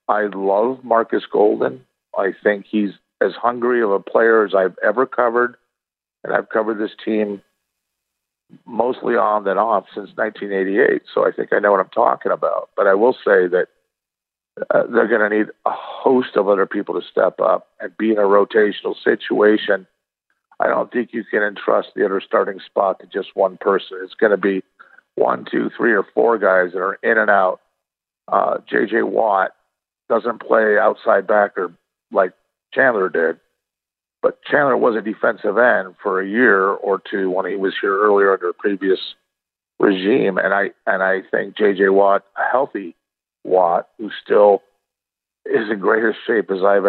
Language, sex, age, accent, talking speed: English, male, 50-69, American, 175 wpm